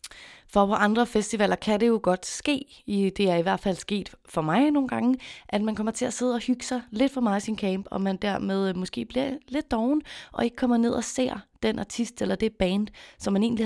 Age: 20-39